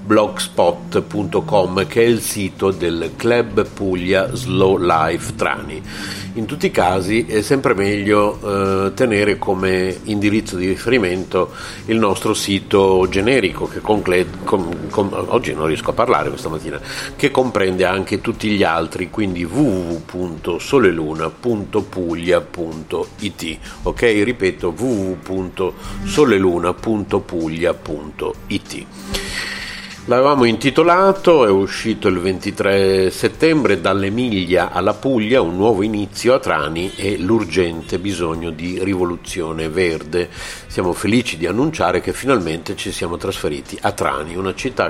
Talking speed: 110 wpm